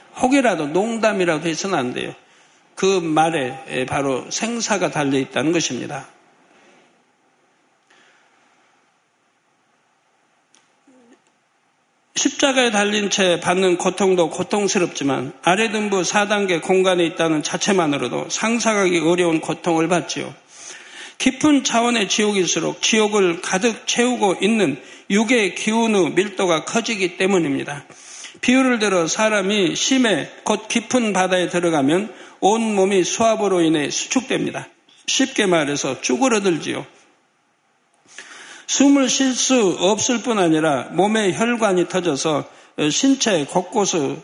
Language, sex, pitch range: Korean, male, 170-230 Hz